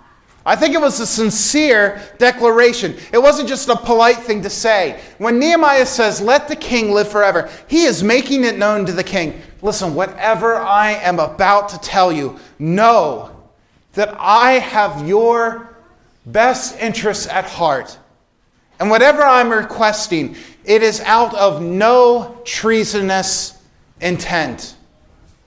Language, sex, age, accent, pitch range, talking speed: English, male, 30-49, American, 165-235 Hz, 140 wpm